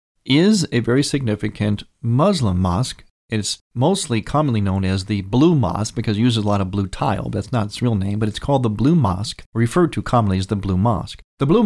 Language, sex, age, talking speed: English, male, 40-59, 215 wpm